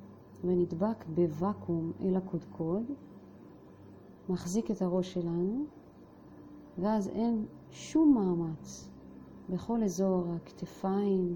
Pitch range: 115-185 Hz